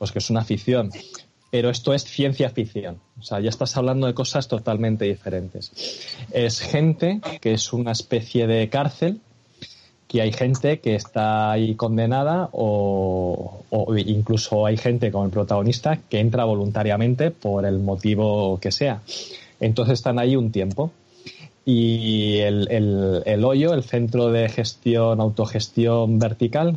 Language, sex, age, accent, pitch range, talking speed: Spanish, male, 20-39, Spanish, 105-130 Hz, 150 wpm